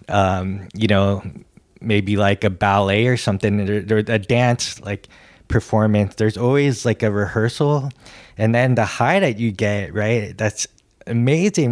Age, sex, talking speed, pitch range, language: 20-39, male, 155 wpm, 100-115 Hz, English